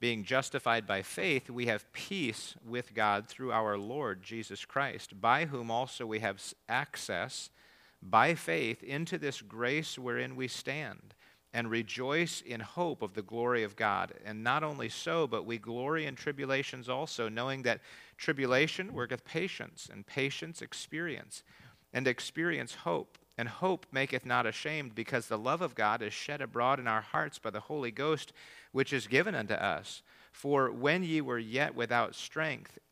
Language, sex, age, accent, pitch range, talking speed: English, male, 40-59, American, 110-140 Hz, 165 wpm